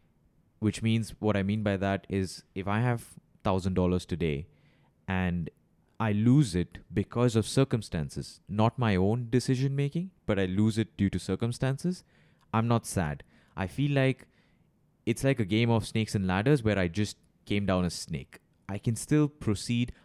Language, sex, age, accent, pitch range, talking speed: English, male, 20-39, Indian, 95-125 Hz, 170 wpm